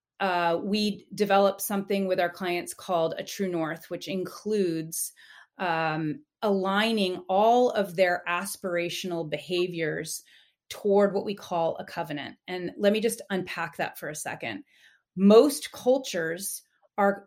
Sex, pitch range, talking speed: female, 170-205 Hz, 130 wpm